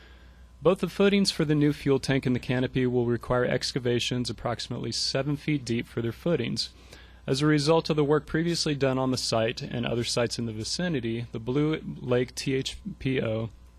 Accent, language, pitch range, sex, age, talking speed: American, English, 115-135 Hz, male, 30-49, 185 wpm